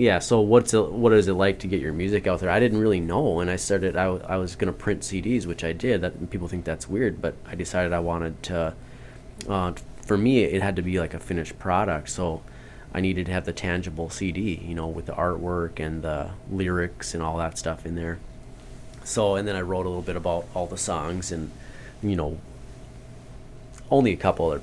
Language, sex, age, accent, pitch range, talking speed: English, male, 20-39, American, 85-100 Hz, 230 wpm